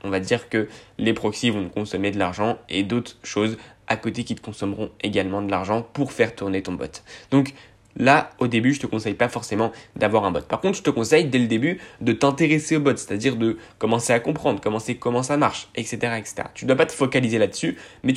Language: French